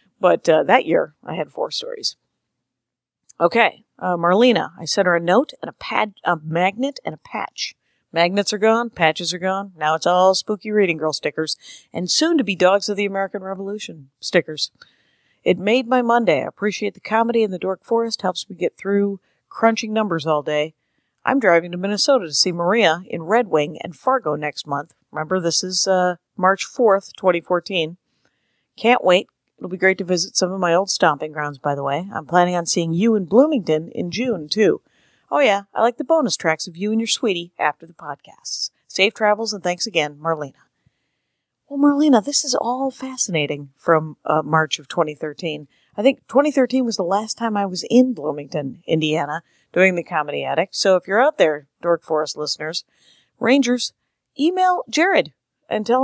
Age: 40-59